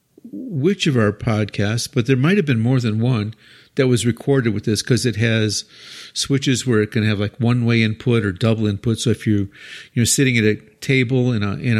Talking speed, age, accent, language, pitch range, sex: 230 wpm, 50-69, American, English, 110-135 Hz, male